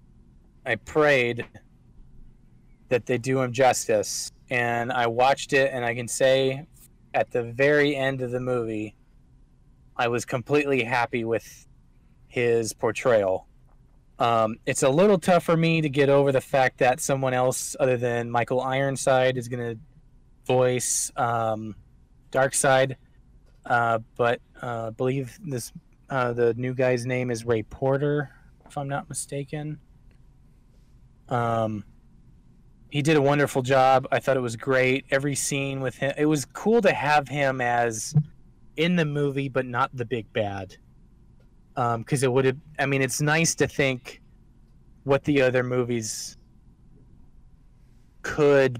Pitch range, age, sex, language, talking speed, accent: 120-140 Hz, 20-39, male, English, 145 wpm, American